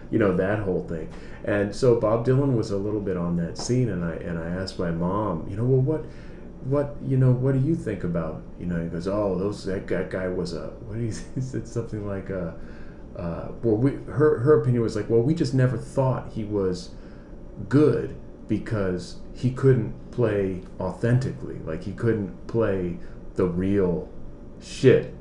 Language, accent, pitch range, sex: English, American, 90-115 Hz, male